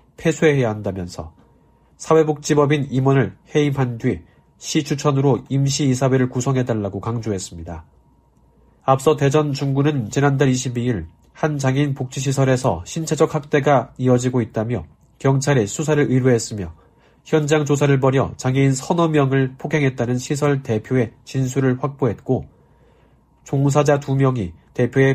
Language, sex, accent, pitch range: Korean, male, native, 120-150 Hz